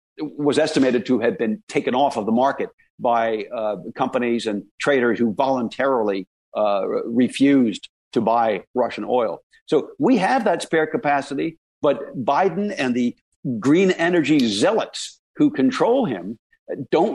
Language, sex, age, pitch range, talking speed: English, male, 60-79, 125-190 Hz, 140 wpm